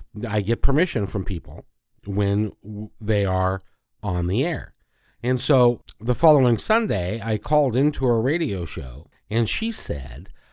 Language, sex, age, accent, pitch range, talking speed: English, male, 50-69, American, 100-125 Hz, 140 wpm